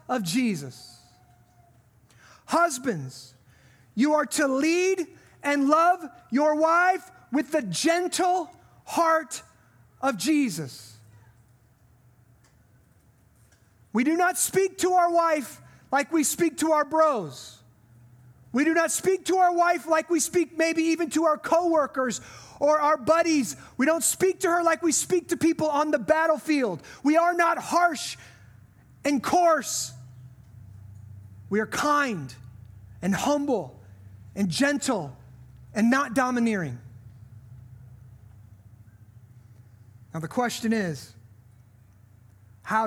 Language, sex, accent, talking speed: English, male, American, 115 wpm